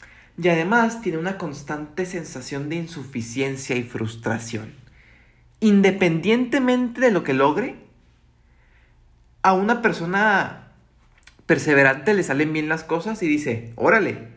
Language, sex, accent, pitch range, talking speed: Spanish, male, Mexican, 125-185 Hz, 115 wpm